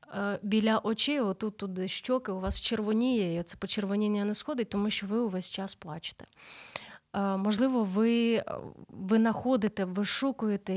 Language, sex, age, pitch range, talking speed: Ukrainian, female, 30-49, 185-225 Hz, 140 wpm